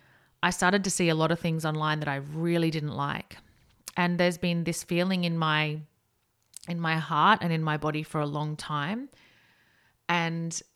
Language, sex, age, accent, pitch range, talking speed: English, female, 30-49, Australian, 155-180 Hz, 185 wpm